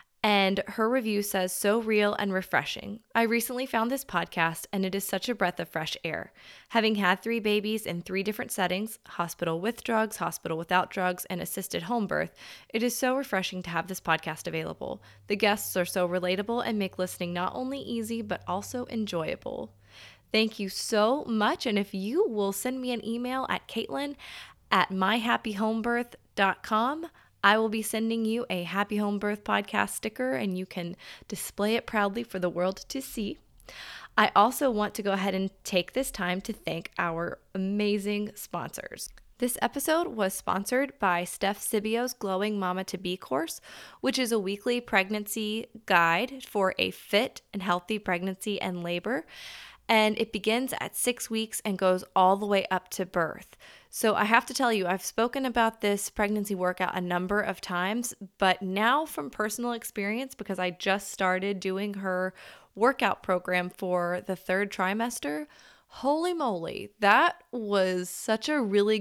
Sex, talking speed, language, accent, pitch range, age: female, 170 wpm, English, American, 185-230 Hz, 20-39